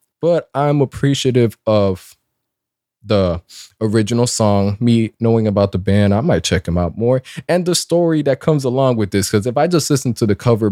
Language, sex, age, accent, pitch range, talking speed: English, male, 20-39, American, 100-125 Hz, 190 wpm